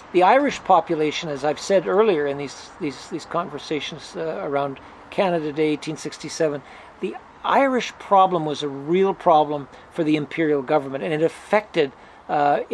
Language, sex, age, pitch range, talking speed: English, male, 50-69, 145-175 Hz, 150 wpm